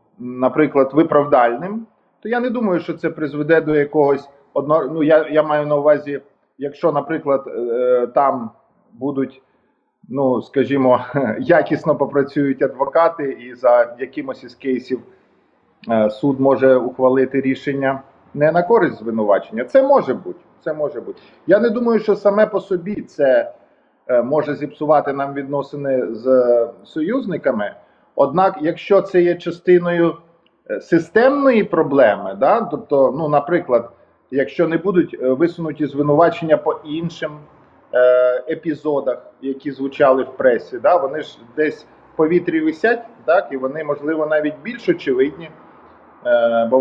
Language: Ukrainian